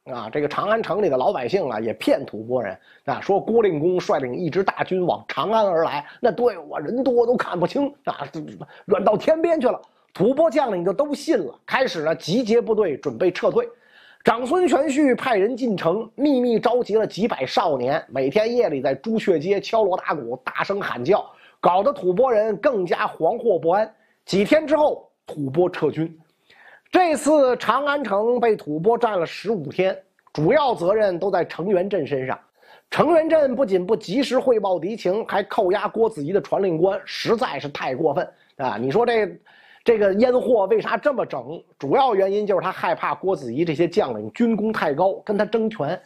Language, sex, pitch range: Chinese, male, 190-265 Hz